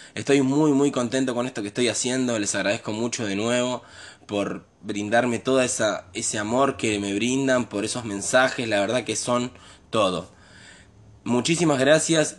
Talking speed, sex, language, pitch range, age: 155 wpm, male, Spanish, 105-130 Hz, 20-39